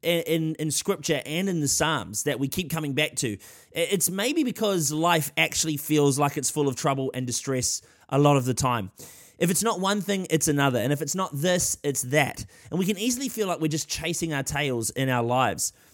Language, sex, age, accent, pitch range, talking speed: English, male, 20-39, Australian, 140-180 Hz, 220 wpm